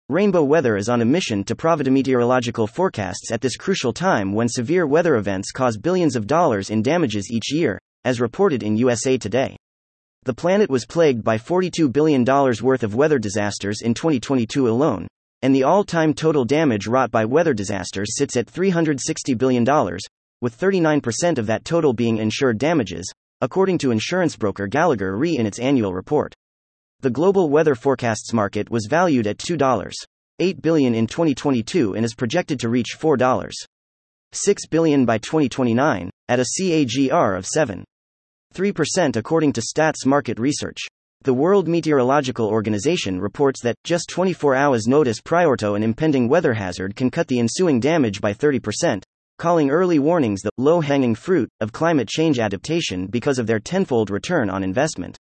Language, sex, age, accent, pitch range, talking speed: English, male, 30-49, American, 110-155 Hz, 160 wpm